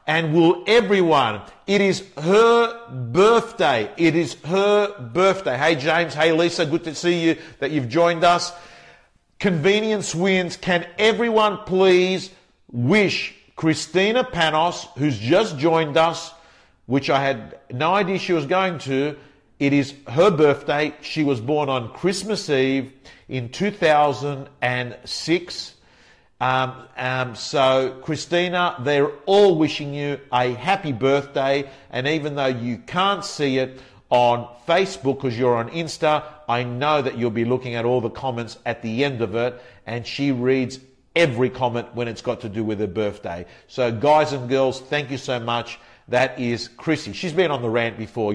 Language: English